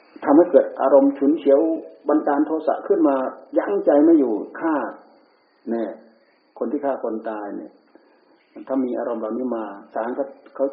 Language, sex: Thai, male